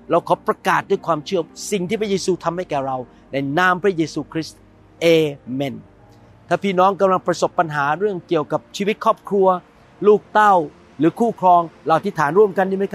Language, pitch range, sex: Thai, 165-215 Hz, male